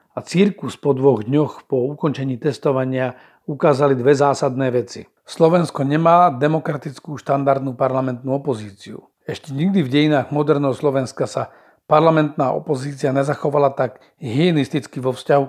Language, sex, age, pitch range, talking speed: Slovak, male, 40-59, 125-150 Hz, 125 wpm